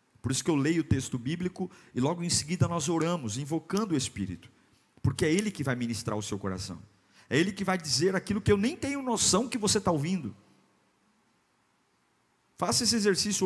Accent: Brazilian